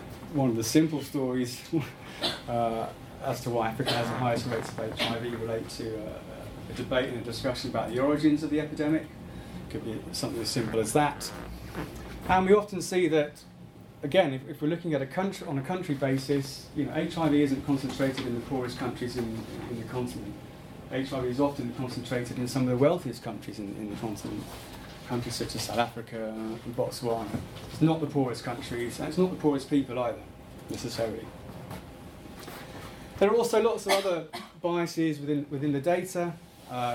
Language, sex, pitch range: English, male, 120-160 Hz